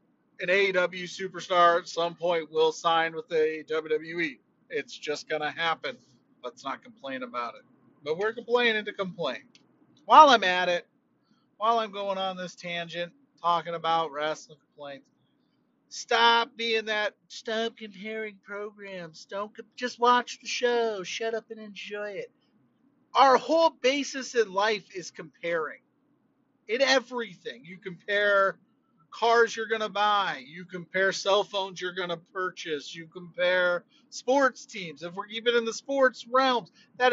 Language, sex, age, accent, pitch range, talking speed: English, male, 30-49, American, 175-240 Hz, 145 wpm